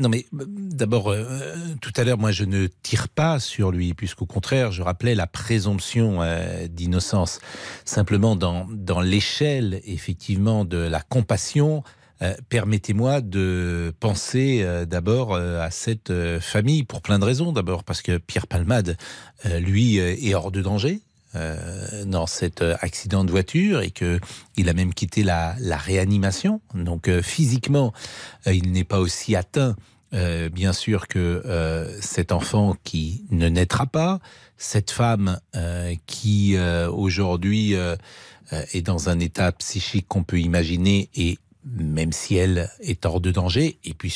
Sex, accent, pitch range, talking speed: male, French, 90-120 Hz, 155 wpm